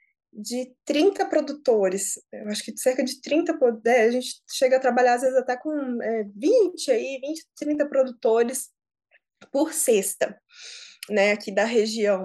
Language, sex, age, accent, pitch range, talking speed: Portuguese, female, 20-39, Brazilian, 245-340 Hz, 135 wpm